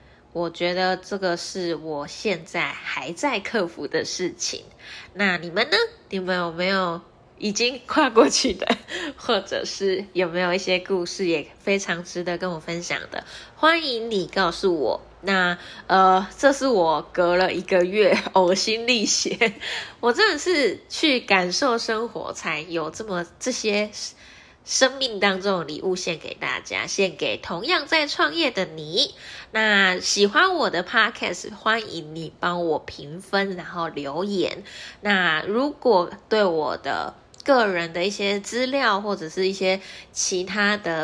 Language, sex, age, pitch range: Chinese, female, 10-29, 175-225 Hz